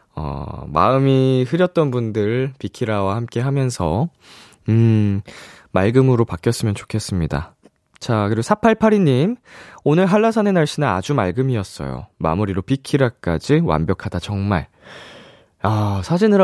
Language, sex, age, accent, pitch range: Korean, male, 20-39, native, 100-155 Hz